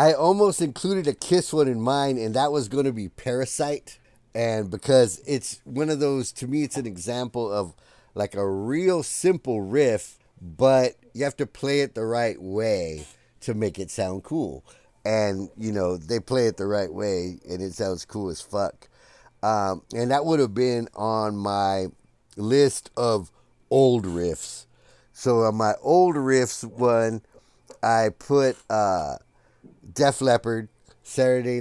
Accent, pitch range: American, 100-130 Hz